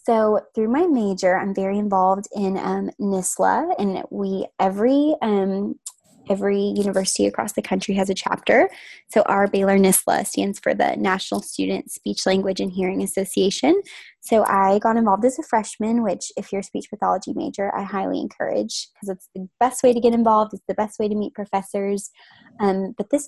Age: 20-39